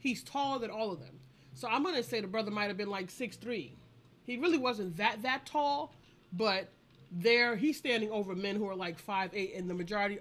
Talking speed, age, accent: 215 wpm, 30-49, American